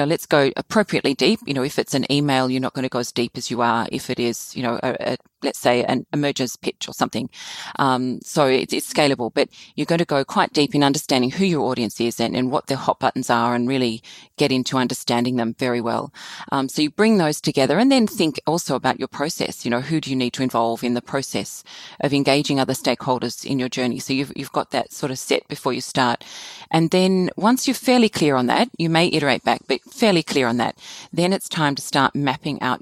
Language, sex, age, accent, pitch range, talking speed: English, female, 30-49, Australian, 125-150 Hz, 245 wpm